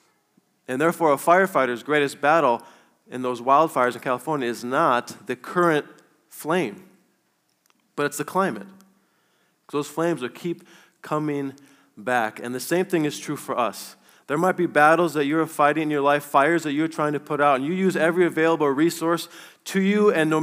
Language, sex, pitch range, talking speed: English, male, 145-195 Hz, 180 wpm